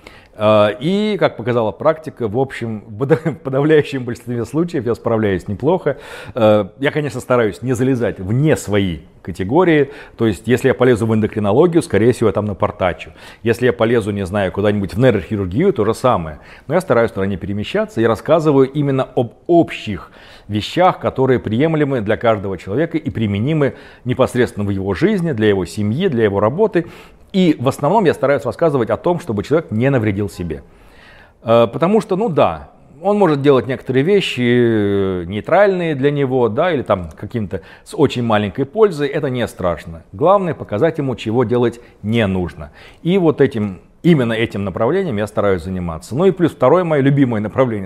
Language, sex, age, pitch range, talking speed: Russian, male, 40-59, 100-140 Hz, 165 wpm